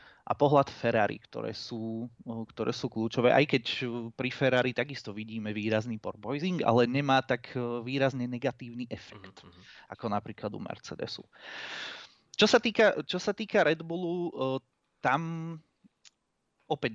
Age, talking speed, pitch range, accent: 30-49, 130 wpm, 120-145 Hz, native